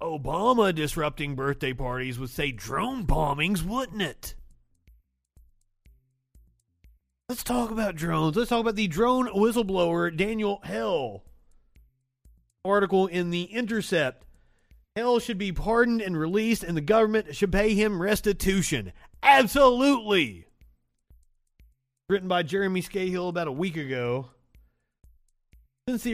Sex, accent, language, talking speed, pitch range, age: male, American, English, 115 wpm, 140-210 Hz, 30-49